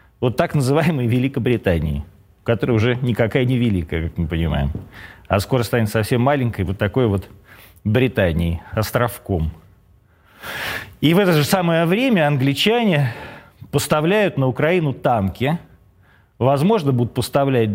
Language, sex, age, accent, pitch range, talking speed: Russian, male, 40-59, native, 100-145 Hz, 120 wpm